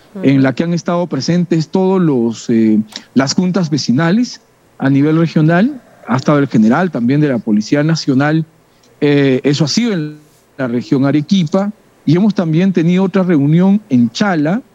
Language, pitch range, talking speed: Spanish, 145-190 Hz, 155 wpm